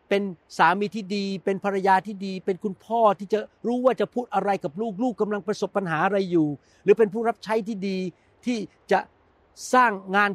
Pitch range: 165-215 Hz